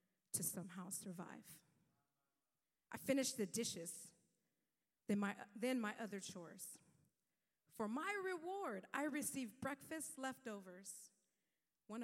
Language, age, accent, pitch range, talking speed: English, 40-59, American, 185-245 Hz, 100 wpm